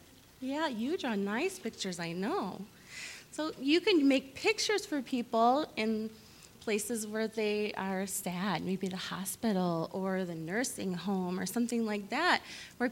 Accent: American